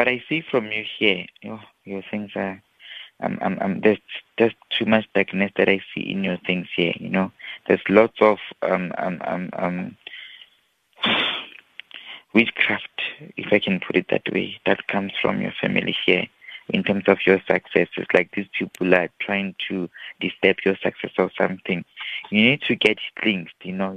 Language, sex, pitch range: English, male, 95-105 Hz